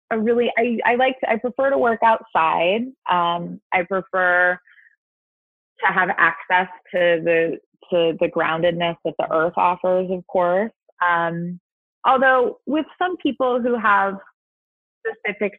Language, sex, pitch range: English, female, 180-235 Hz